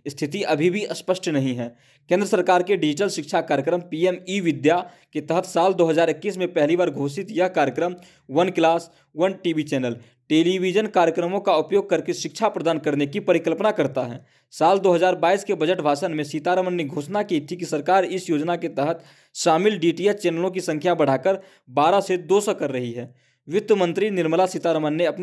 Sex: male